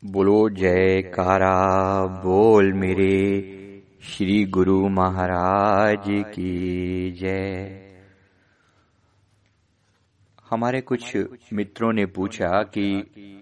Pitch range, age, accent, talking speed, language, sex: 95-110 Hz, 50-69, native, 70 wpm, Hindi, male